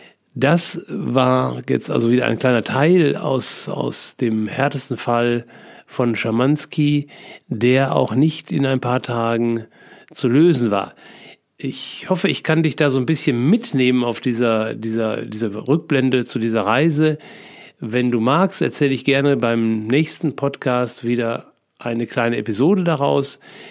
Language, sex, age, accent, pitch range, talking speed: German, male, 50-69, German, 115-145 Hz, 140 wpm